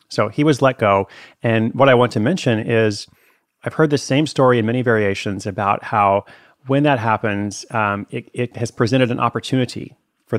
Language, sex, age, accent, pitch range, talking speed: English, male, 30-49, American, 105-120 Hz, 190 wpm